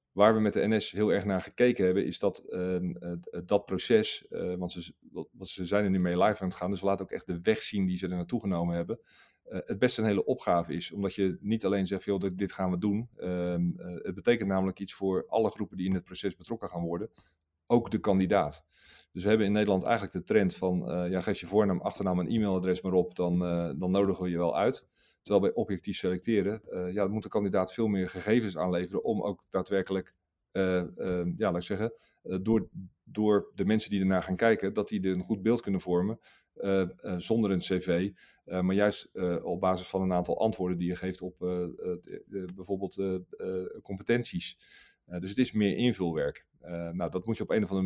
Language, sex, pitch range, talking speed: Dutch, male, 90-100 Hz, 235 wpm